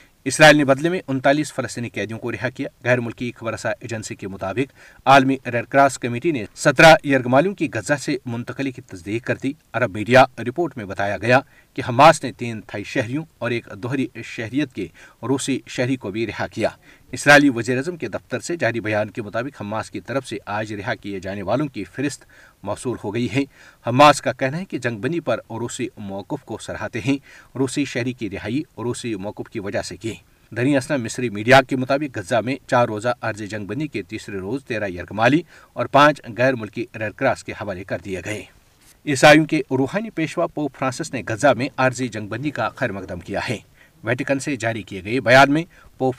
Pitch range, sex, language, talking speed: 115-140 Hz, male, Urdu, 200 wpm